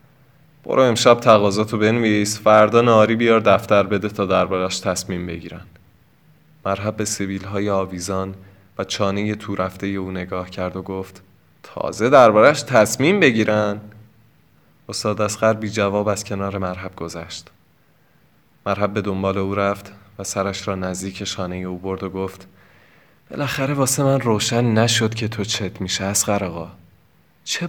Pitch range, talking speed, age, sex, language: 95-115 Hz, 140 wpm, 20-39, male, Persian